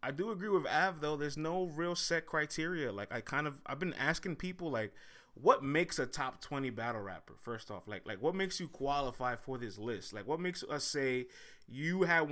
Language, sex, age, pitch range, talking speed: English, male, 20-39, 120-155 Hz, 220 wpm